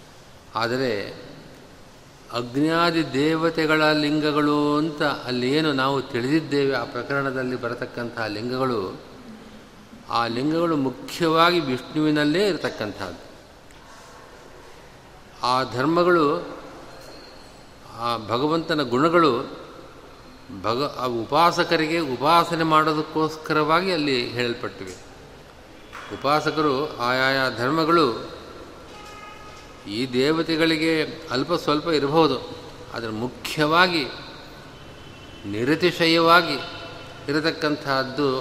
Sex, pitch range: male, 125-155 Hz